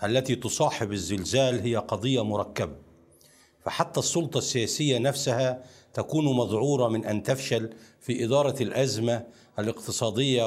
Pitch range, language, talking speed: 110-140 Hz, Arabic, 110 wpm